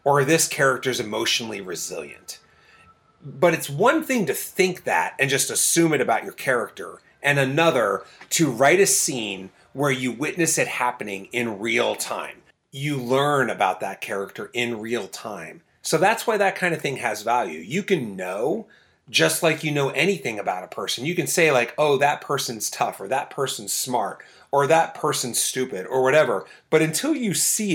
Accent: American